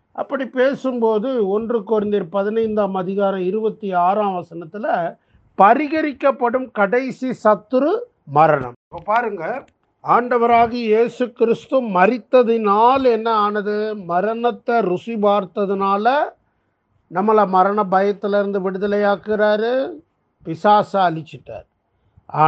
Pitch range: 185-235 Hz